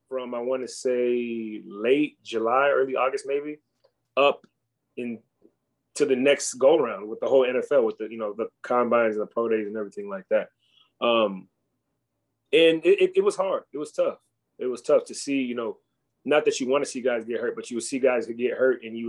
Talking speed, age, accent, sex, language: 220 wpm, 30-49, American, male, English